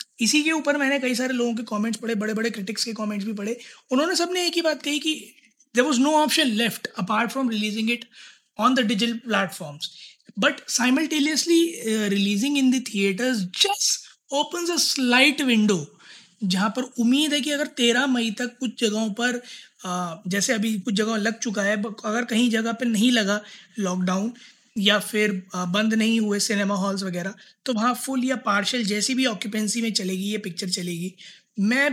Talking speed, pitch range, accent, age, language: 175 wpm, 205-255 Hz, native, 20-39, Hindi